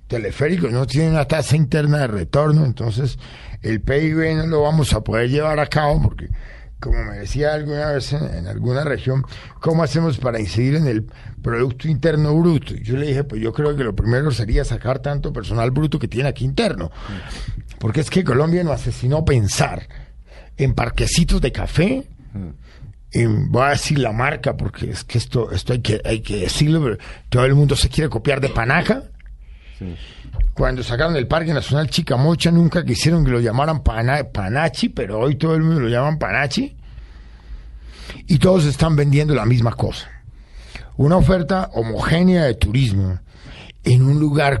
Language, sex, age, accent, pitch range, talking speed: Spanish, male, 50-69, Mexican, 110-150 Hz, 175 wpm